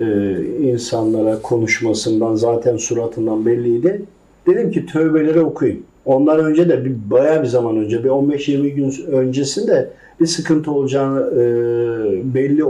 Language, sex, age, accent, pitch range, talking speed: Turkish, male, 50-69, native, 125-175 Hz, 130 wpm